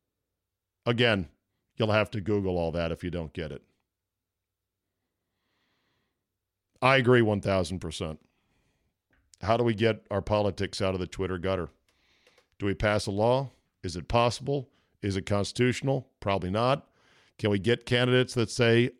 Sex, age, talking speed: male, 50-69, 140 wpm